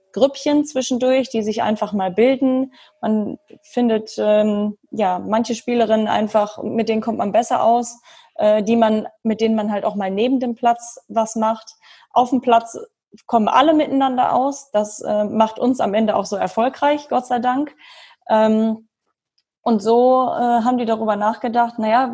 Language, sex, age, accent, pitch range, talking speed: German, female, 20-39, German, 210-245 Hz, 160 wpm